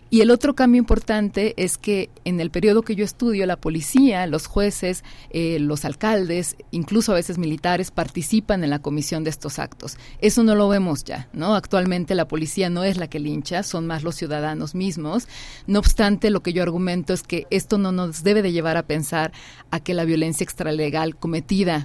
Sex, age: female, 40-59